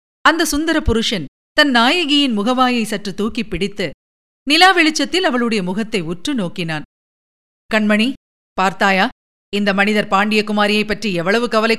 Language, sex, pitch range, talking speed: Tamil, female, 210-285 Hz, 115 wpm